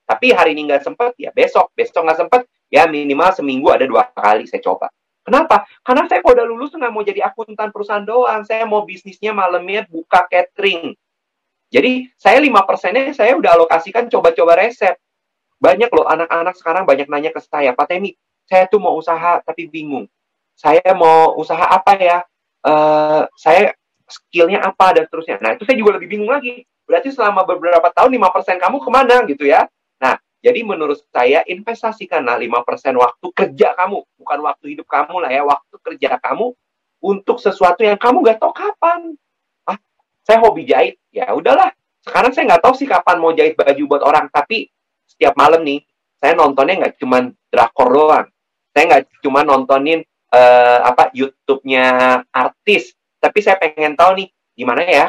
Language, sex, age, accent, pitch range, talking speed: Indonesian, male, 30-49, native, 160-245 Hz, 170 wpm